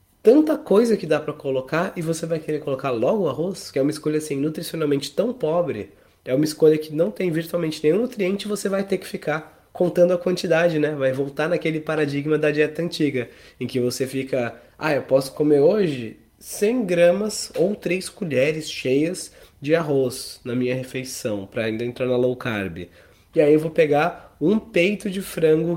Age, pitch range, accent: 20-39, 130-170 Hz, Brazilian